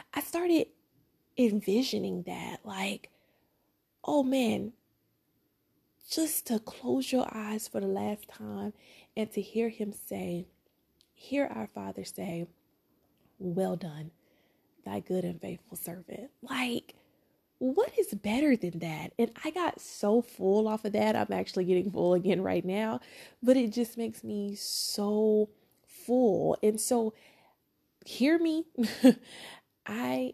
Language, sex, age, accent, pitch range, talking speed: English, female, 20-39, American, 180-230 Hz, 130 wpm